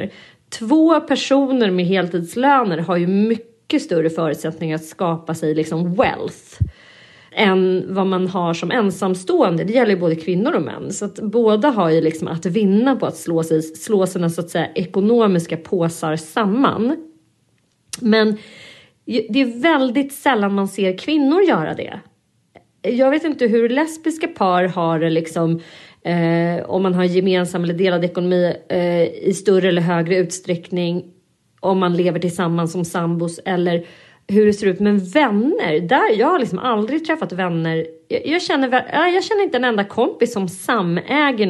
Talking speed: 155 wpm